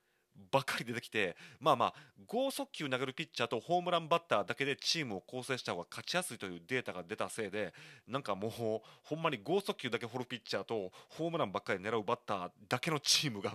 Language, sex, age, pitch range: Japanese, male, 30-49, 105-160 Hz